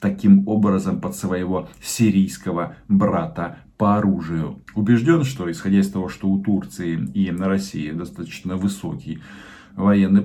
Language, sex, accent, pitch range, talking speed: Russian, male, native, 95-115 Hz, 130 wpm